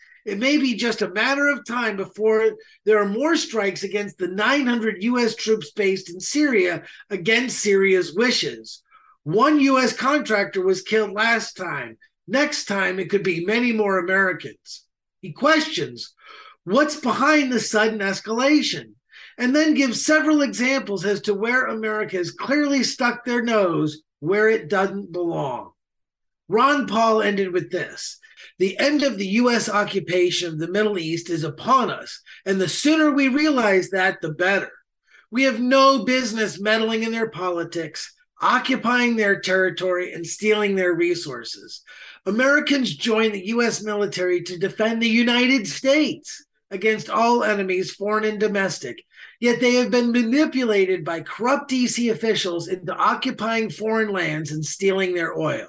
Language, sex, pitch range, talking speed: English, male, 190-255 Hz, 150 wpm